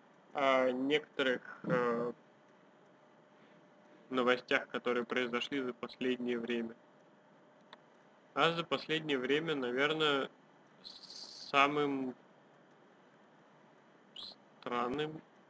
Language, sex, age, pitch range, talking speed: Russian, male, 30-49, 125-155 Hz, 60 wpm